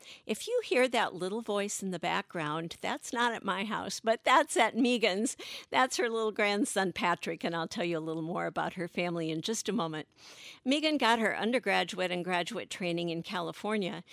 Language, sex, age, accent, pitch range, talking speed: English, female, 50-69, American, 170-220 Hz, 195 wpm